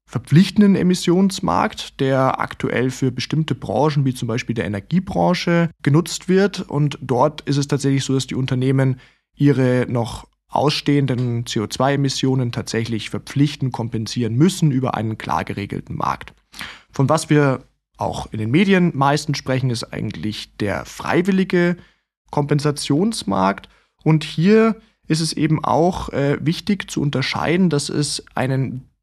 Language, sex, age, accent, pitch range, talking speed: German, male, 20-39, German, 125-165 Hz, 130 wpm